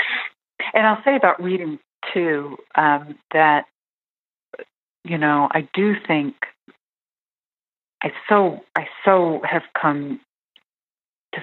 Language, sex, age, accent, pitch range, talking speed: English, female, 40-59, American, 140-170 Hz, 105 wpm